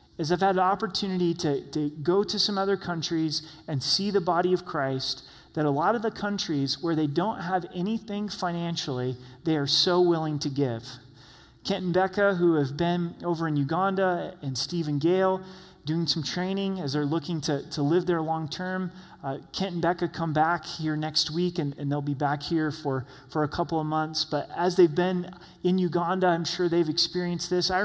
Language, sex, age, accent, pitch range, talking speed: English, male, 30-49, American, 145-180 Hz, 205 wpm